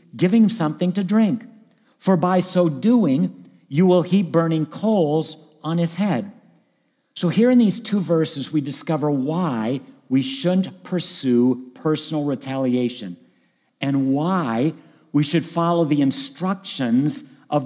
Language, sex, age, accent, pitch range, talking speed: English, male, 50-69, American, 145-200 Hz, 130 wpm